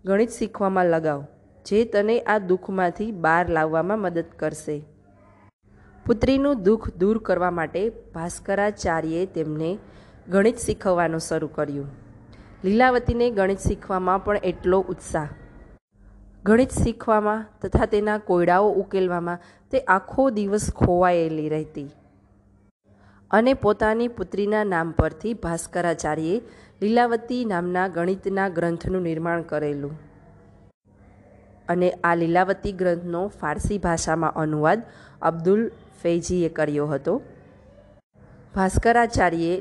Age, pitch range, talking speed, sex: 20-39, 155-205 Hz, 90 wpm, female